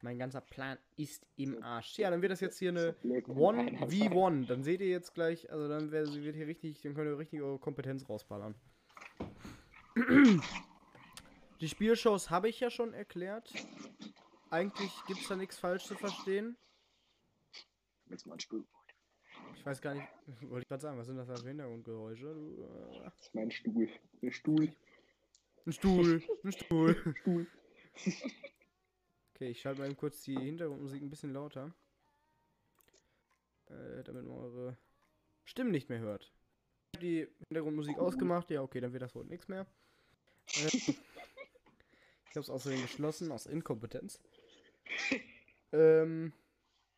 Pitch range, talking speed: 135-185 Hz, 140 wpm